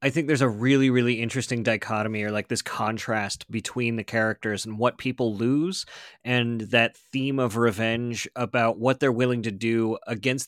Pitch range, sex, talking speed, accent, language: 110-125 Hz, male, 180 wpm, American, English